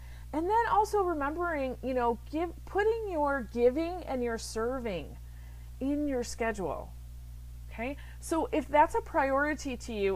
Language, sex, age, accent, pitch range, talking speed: English, female, 40-59, American, 190-265 Hz, 140 wpm